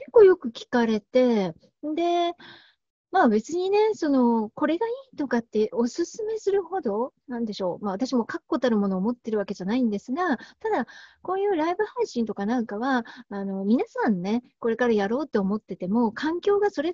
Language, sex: Japanese, female